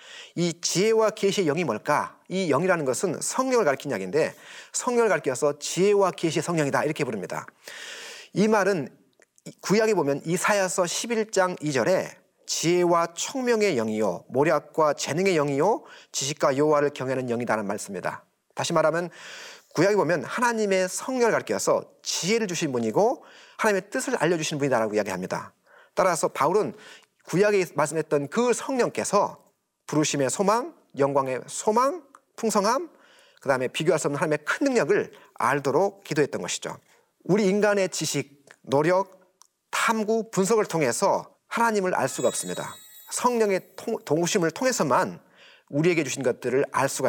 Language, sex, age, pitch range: Korean, male, 30-49, 155-230 Hz